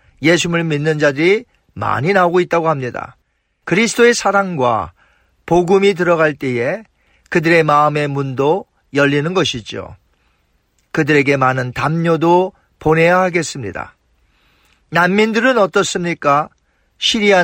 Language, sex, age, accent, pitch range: Korean, male, 40-59, native, 140-195 Hz